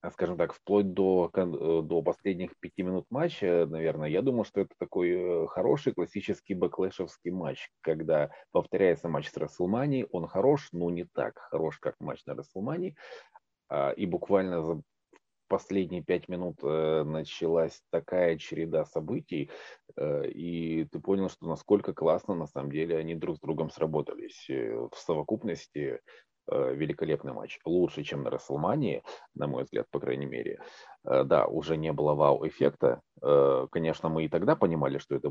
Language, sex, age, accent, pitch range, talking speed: Russian, male, 30-49, native, 80-95 Hz, 145 wpm